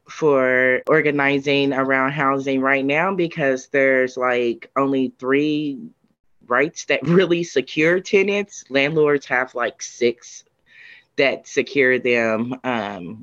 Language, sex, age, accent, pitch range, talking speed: English, female, 20-39, American, 125-160 Hz, 110 wpm